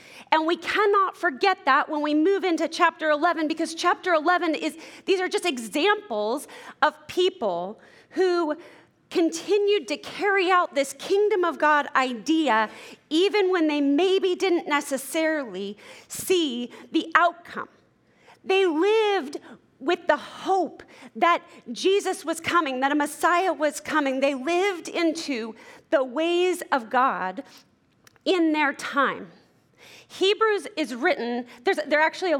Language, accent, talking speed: English, American, 135 wpm